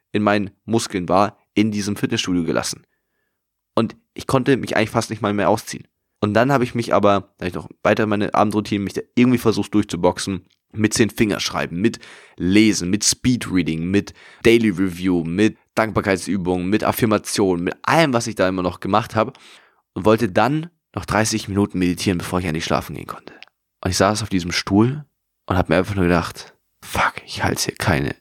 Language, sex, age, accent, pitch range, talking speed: German, male, 20-39, German, 90-110 Hz, 185 wpm